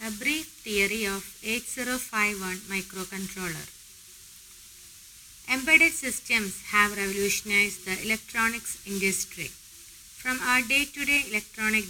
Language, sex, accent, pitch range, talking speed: English, female, Indian, 190-235 Hz, 85 wpm